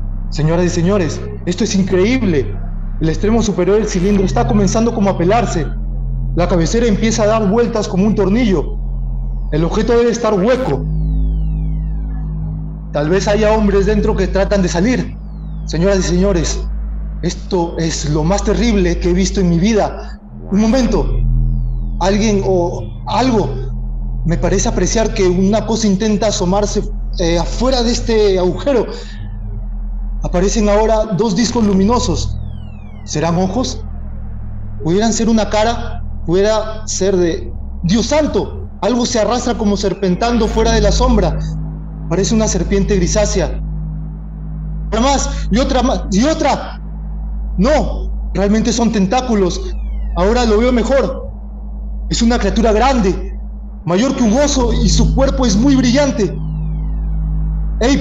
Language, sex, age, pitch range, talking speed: Spanish, male, 30-49, 160-220 Hz, 135 wpm